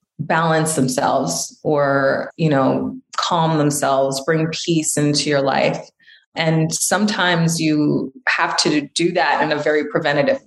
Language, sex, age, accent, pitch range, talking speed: English, female, 30-49, American, 145-170 Hz, 130 wpm